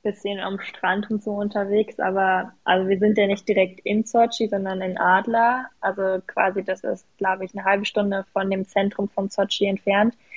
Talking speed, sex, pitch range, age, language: 190 wpm, female, 195-215 Hz, 10-29, German